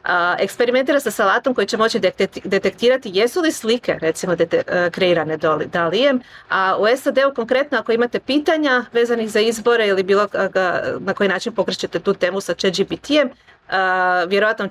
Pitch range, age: 180-235 Hz, 30-49